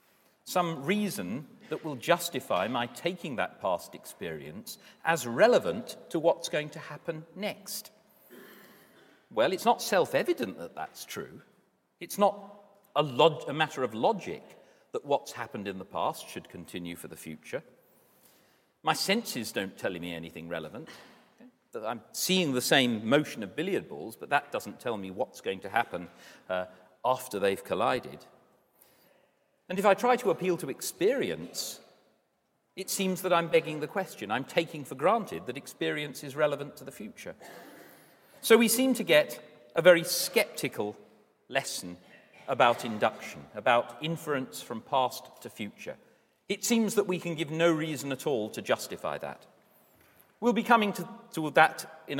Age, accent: 50-69, British